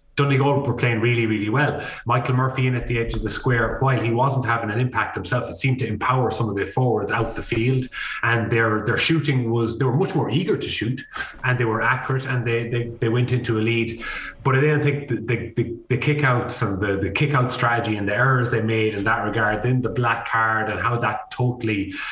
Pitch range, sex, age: 105-125 Hz, male, 20-39